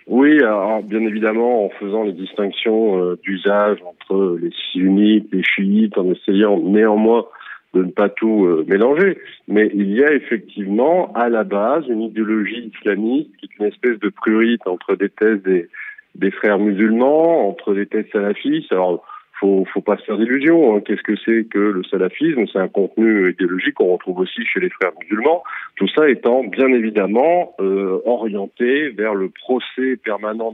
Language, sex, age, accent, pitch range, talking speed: French, male, 40-59, French, 100-120 Hz, 175 wpm